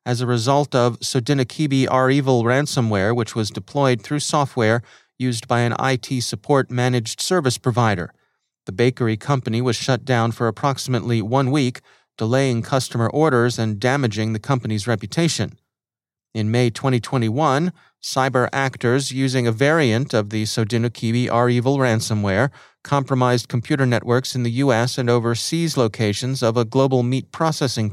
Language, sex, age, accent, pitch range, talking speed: English, male, 40-59, American, 110-130 Hz, 140 wpm